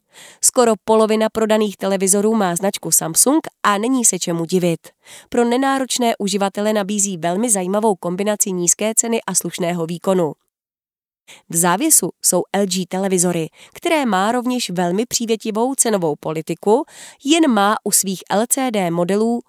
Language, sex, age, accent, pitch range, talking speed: Czech, female, 30-49, native, 180-235 Hz, 130 wpm